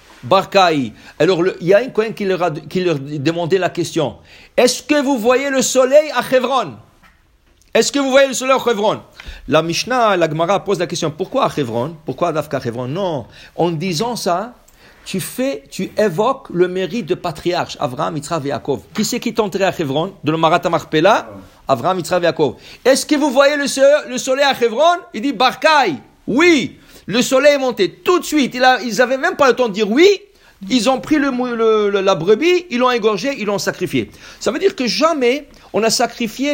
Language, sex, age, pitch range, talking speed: English, male, 50-69, 180-265 Hz, 205 wpm